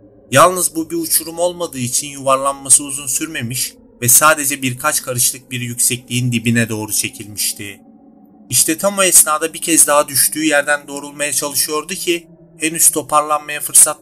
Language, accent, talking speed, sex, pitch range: Turkish, native, 140 wpm, male, 120-155 Hz